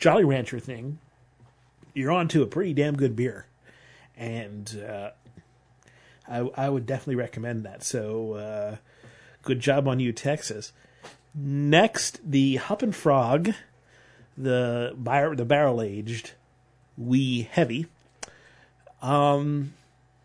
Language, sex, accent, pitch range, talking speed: English, male, American, 120-150 Hz, 115 wpm